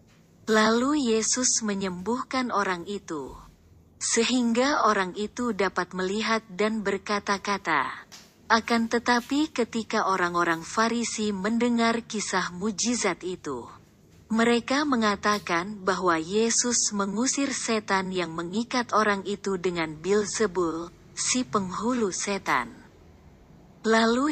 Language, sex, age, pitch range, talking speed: Indonesian, female, 30-49, 185-230 Hz, 90 wpm